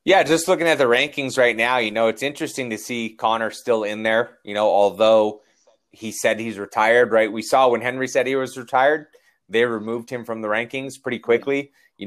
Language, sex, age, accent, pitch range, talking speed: English, male, 30-49, American, 105-125 Hz, 215 wpm